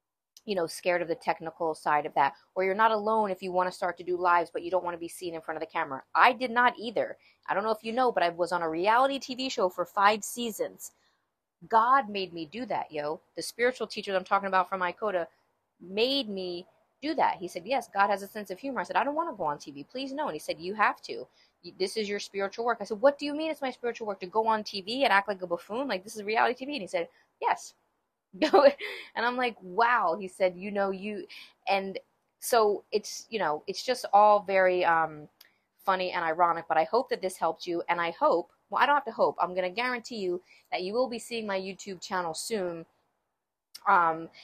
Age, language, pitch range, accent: 30-49, English, 175-230 Hz, American